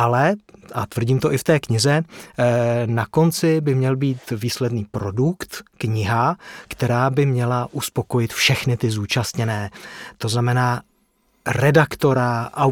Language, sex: Czech, male